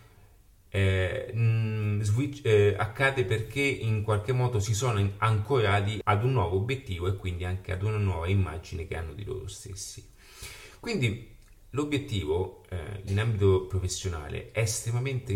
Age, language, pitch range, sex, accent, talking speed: 30-49, Italian, 95-110 Hz, male, native, 130 wpm